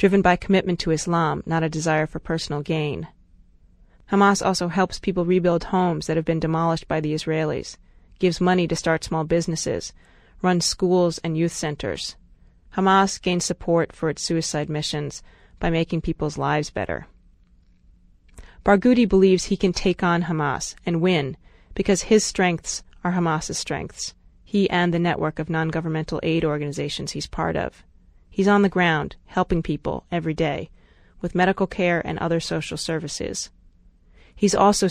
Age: 30-49